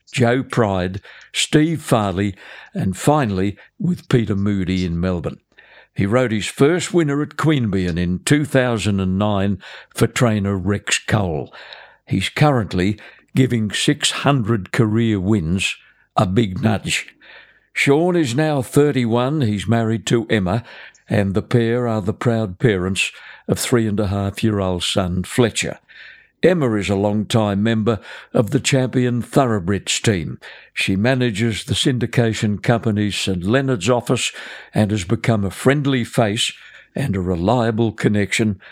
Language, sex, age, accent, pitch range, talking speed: English, male, 60-79, British, 100-125 Hz, 130 wpm